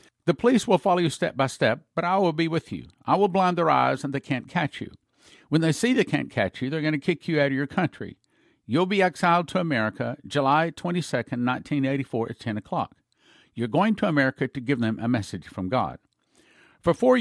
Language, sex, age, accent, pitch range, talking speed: English, male, 50-69, American, 125-170 Hz, 225 wpm